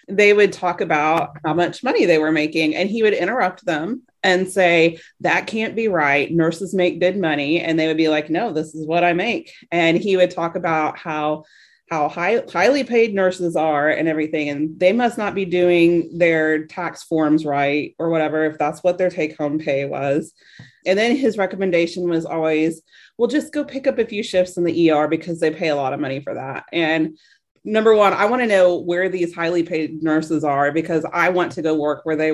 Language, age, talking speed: English, 30-49, 215 wpm